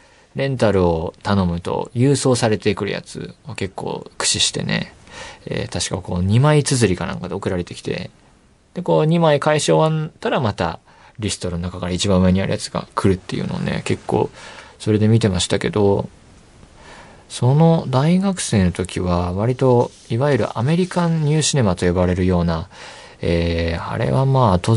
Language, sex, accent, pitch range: Japanese, male, native, 90-125 Hz